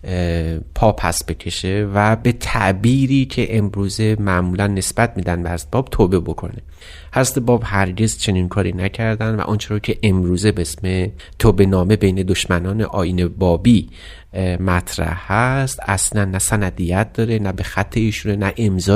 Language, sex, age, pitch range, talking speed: Persian, male, 30-49, 95-115 Hz, 140 wpm